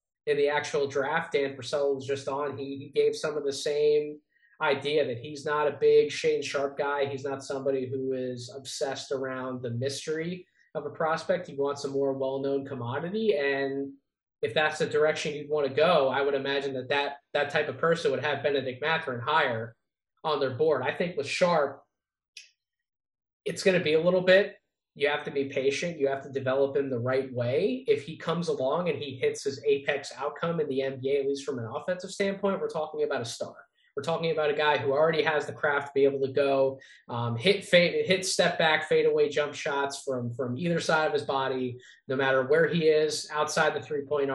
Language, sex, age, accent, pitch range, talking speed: English, male, 20-39, American, 135-180 Hz, 210 wpm